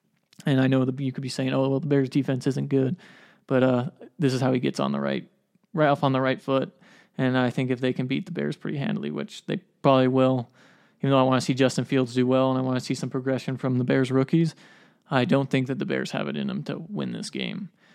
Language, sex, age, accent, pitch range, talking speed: English, male, 20-39, American, 130-150 Hz, 270 wpm